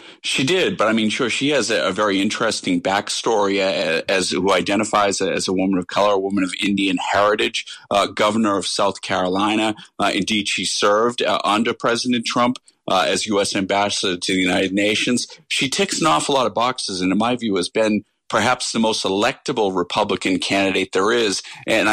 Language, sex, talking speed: English, male, 190 wpm